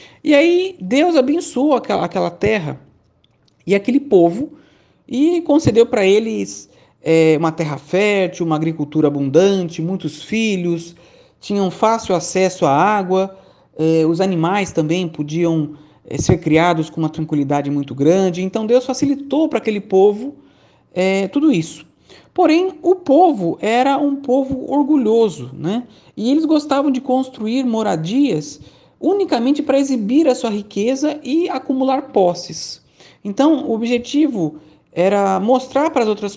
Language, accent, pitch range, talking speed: Portuguese, Brazilian, 170-270 Hz, 135 wpm